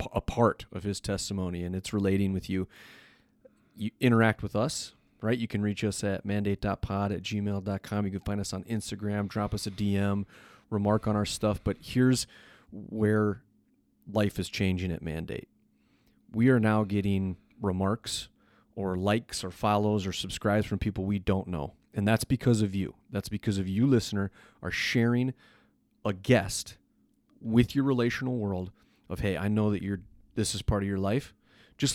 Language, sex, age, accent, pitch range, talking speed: English, male, 30-49, American, 100-115 Hz, 175 wpm